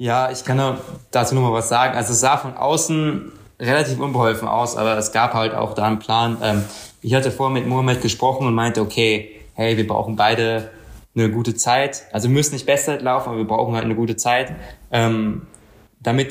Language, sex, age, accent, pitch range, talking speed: German, male, 20-39, German, 110-125 Hz, 195 wpm